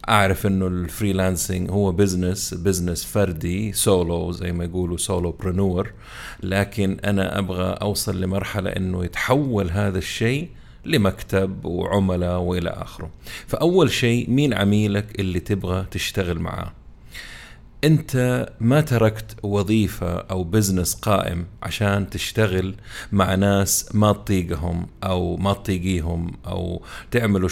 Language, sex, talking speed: Arabic, male, 115 wpm